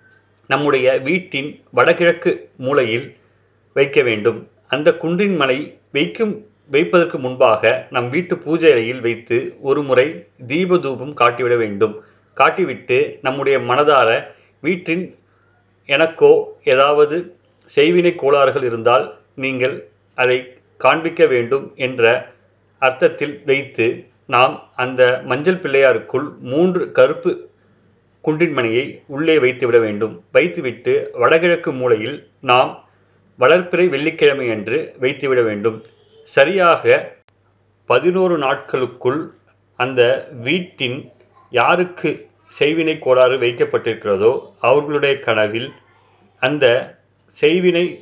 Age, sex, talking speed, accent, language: 30-49, male, 85 wpm, native, Tamil